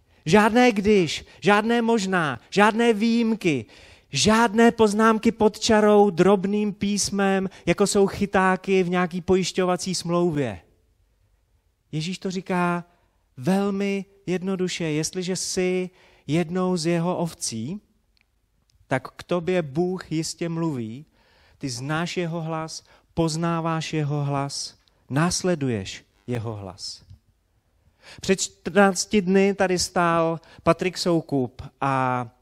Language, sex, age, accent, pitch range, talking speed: Czech, male, 30-49, native, 115-185 Hz, 100 wpm